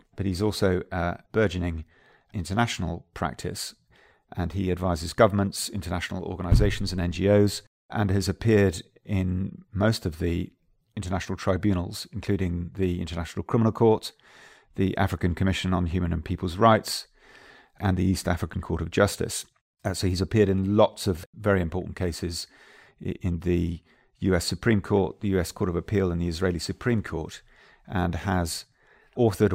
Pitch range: 85-100 Hz